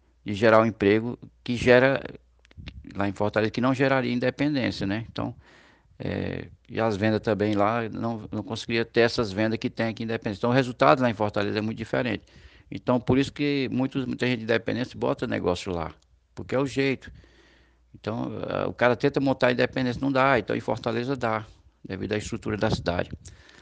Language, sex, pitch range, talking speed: Portuguese, male, 100-125 Hz, 195 wpm